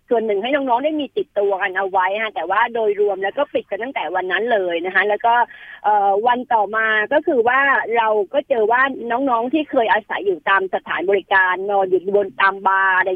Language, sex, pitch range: Thai, female, 200-275 Hz